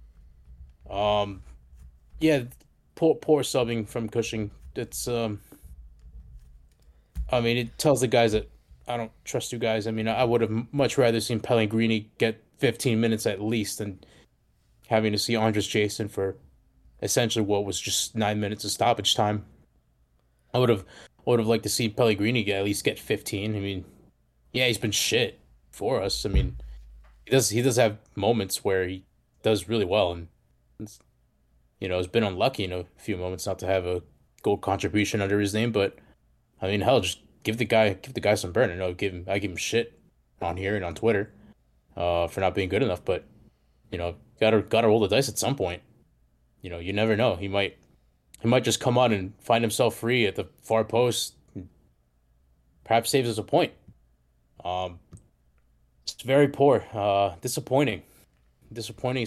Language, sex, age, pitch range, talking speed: English, male, 20-39, 75-115 Hz, 185 wpm